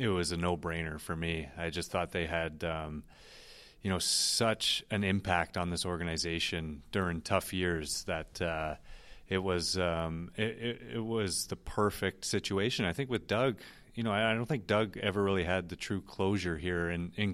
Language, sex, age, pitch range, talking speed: English, male, 30-49, 85-95 Hz, 185 wpm